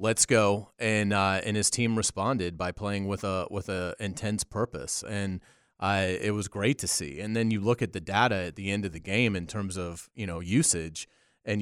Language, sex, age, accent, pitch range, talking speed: English, male, 30-49, American, 95-115 Hz, 220 wpm